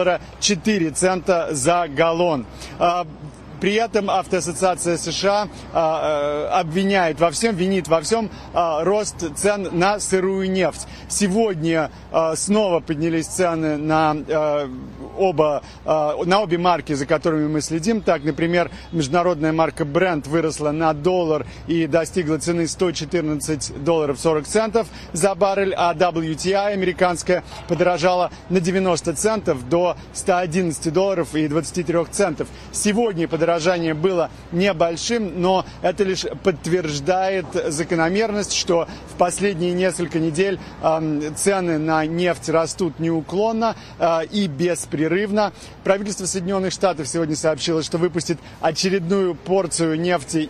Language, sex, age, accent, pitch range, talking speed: Russian, male, 40-59, native, 160-190 Hz, 115 wpm